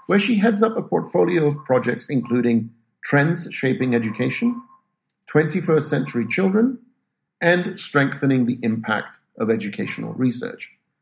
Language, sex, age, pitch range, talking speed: English, male, 50-69, 125-190 Hz, 120 wpm